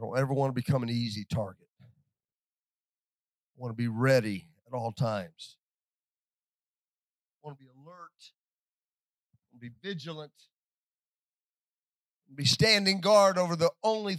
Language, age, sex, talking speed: English, 40-59, male, 135 wpm